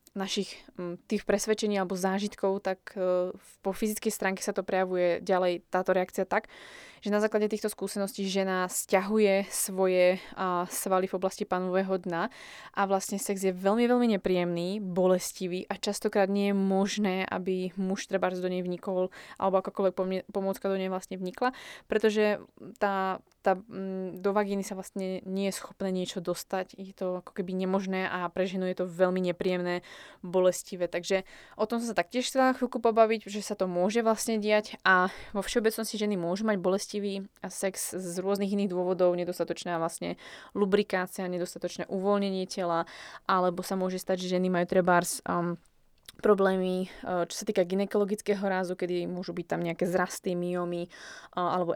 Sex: female